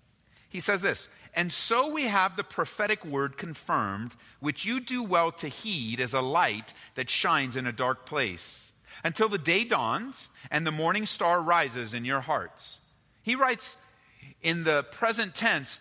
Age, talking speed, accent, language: 40-59, 165 wpm, American, English